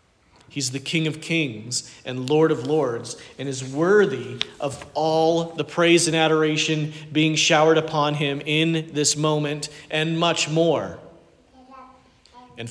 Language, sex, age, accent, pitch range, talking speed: English, male, 40-59, American, 130-160 Hz, 135 wpm